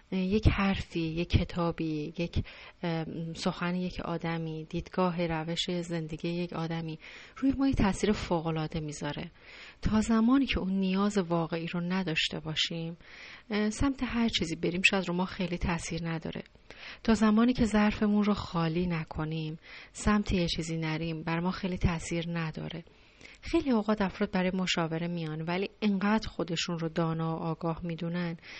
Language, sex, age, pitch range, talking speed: Persian, female, 30-49, 165-210 Hz, 145 wpm